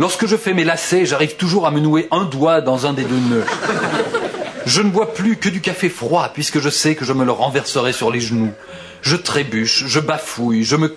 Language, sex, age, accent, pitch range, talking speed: French, male, 40-59, French, 135-180 Hz, 230 wpm